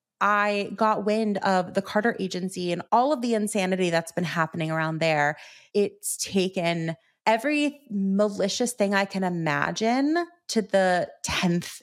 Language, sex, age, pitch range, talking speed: English, female, 30-49, 180-230 Hz, 140 wpm